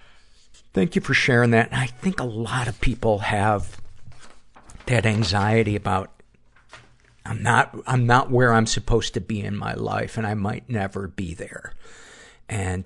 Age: 50-69